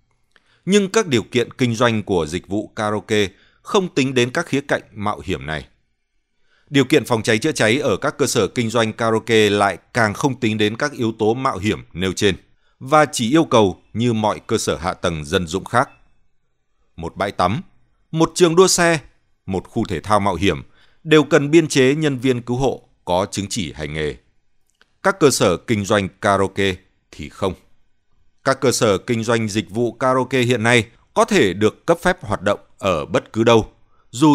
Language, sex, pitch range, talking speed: Vietnamese, male, 100-140 Hz, 195 wpm